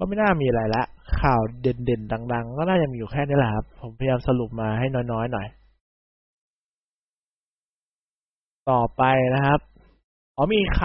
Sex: male